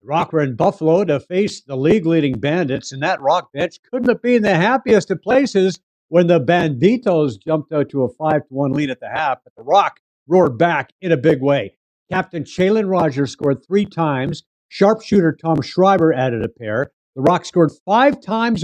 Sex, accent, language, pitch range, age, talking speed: male, American, English, 130-170 Hz, 60-79, 195 wpm